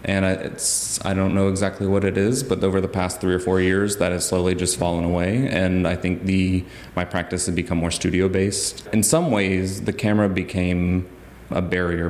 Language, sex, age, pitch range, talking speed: English, male, 30-49, 90-95 Hz, 205 wpm